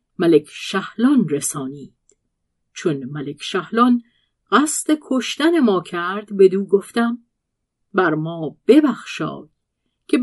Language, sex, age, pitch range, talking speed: Persian, female, 50-69, 165-245 Hz, 100 wpm